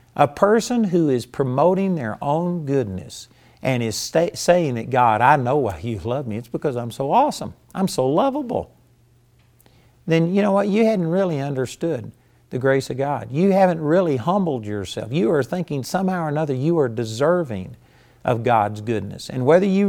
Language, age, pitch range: English, 50-69, 120-165 Hz